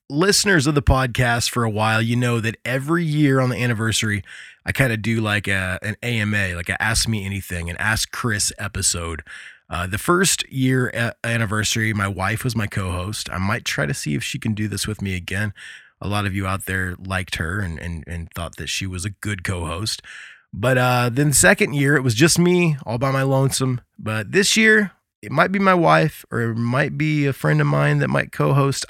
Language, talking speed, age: English, 220 wpm, 20-39